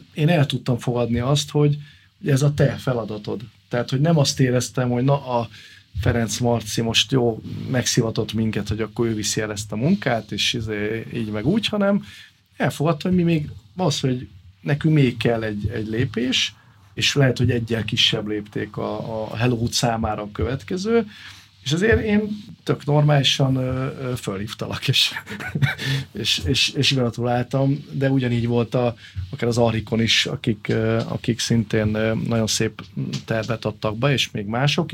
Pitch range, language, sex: 110-135 Hz, Hungarian, male